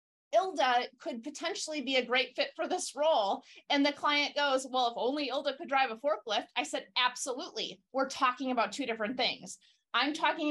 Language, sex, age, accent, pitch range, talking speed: English, female, 30-49, American, 240-300 Hz, 190 wpm